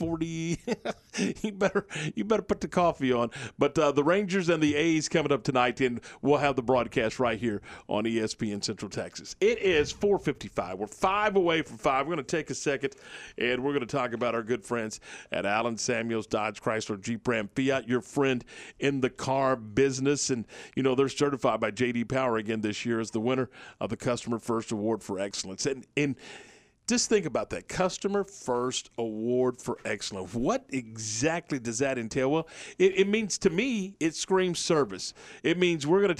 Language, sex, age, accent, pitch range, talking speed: English, male, 40-59, American, 115-160 Hz, 200 wpm